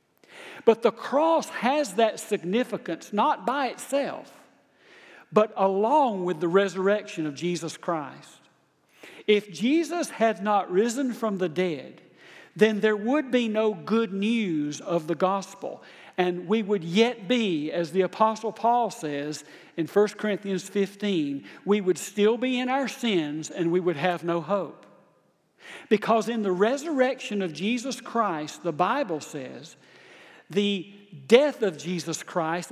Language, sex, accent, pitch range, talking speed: English, male, American, 175-235 Hz, 140 wpm